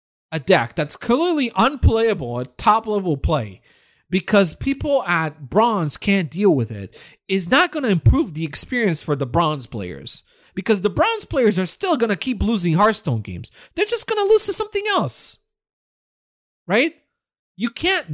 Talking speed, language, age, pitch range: 165 wpm, English, 40-59, 145-245 Hz